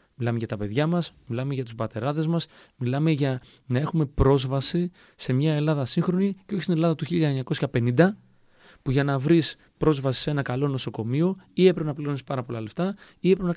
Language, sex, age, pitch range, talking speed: Greek, male, 30-49, 120-165 Hz, 195 wpm